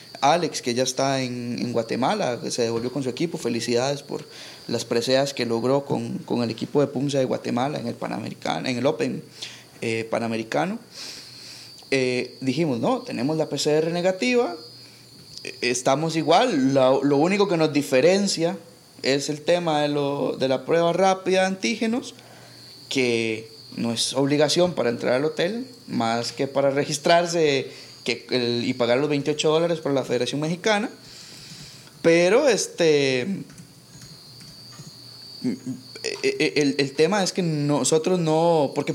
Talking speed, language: 135 wpm, Spanish